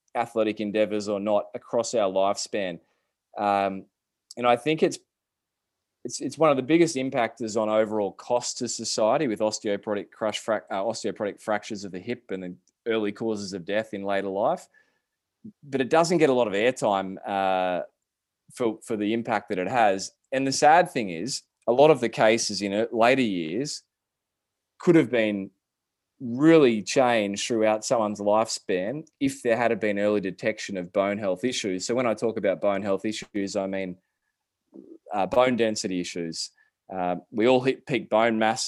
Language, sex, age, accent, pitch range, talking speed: English, male, 20-39, Australian, 100-120 Hz, 170 wpm